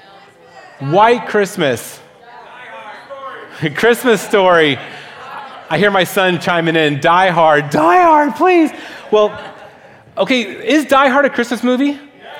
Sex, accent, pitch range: male, American, 140-225 Hz